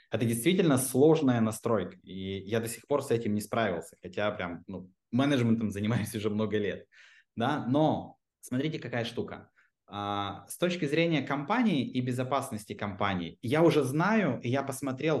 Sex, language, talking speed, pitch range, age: male, Russian, 150 wpm, 115-150 Hz, 20-39